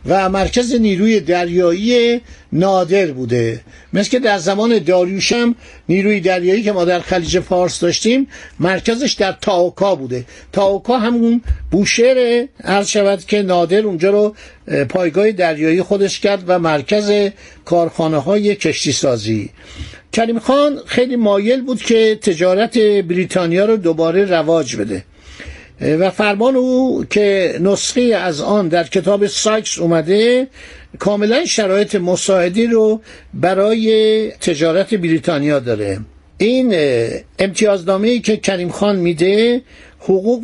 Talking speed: 120 wpm